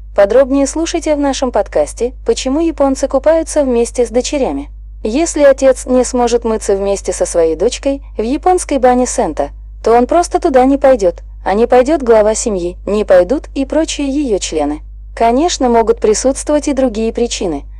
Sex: female